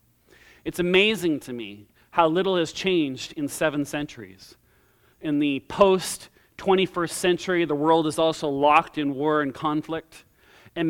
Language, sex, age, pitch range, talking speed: English, male, 40-59, 145-175 Hz, 140 wpm